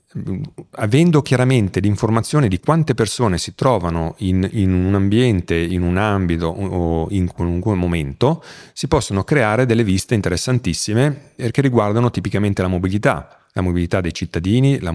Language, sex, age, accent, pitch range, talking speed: Italian, male, 40-59, native, 90-120 Hz, 140 wpm